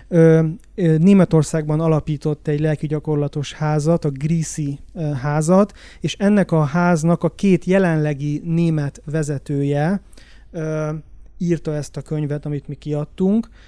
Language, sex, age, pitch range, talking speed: Hungarian, male, 30-49, 150-170 Hz, 120 wpm